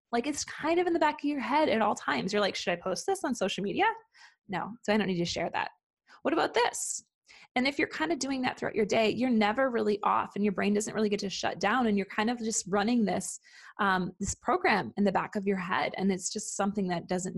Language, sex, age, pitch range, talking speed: English, female, 20-39, 185-235 Hz, 270 wpm